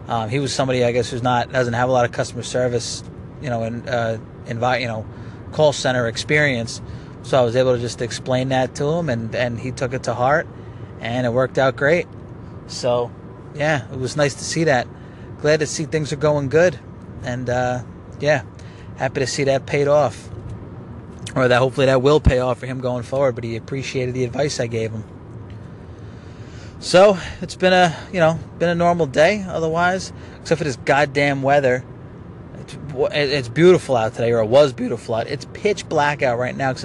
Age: 30-49